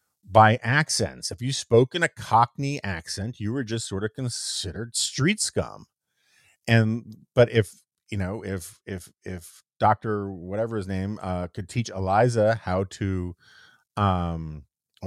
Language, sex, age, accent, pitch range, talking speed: English, male, 40-59, American, 95-135 Hz, 145 wpm